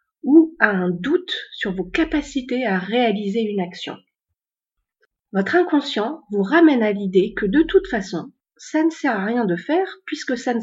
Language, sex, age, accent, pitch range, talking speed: French, female, 40-59, French, 195-275 Hz, 175 wpm